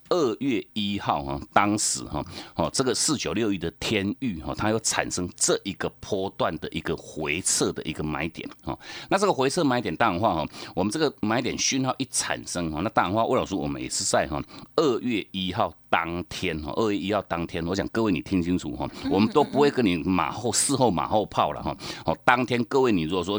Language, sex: Chinese, male